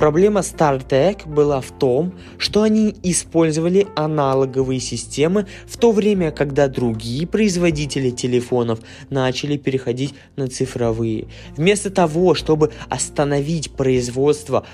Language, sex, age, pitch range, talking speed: Russian, male, 20-39, 125-165 Hz, 105 wpm